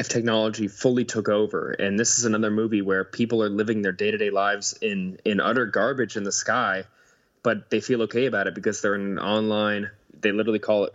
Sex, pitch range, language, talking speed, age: male, 100-120 Hz, English, 210 wpm, 20-39